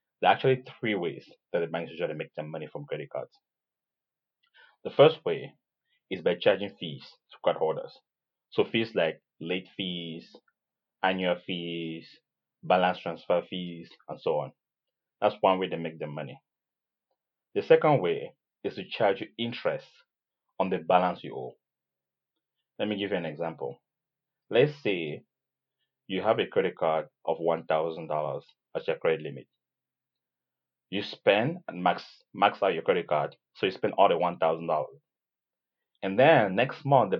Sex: male